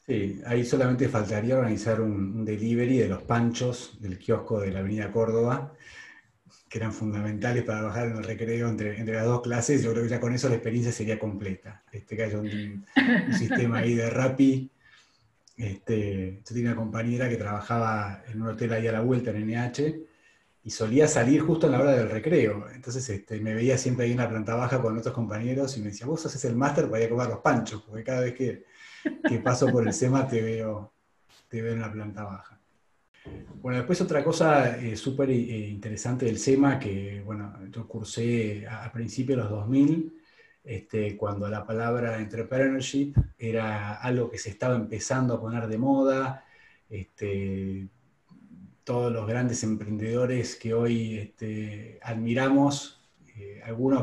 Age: 30-49